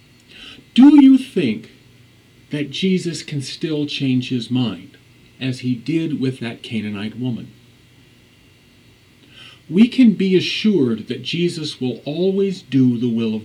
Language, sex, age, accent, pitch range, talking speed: English, male, 50-69, American, 120-175 Hz, 130 wpm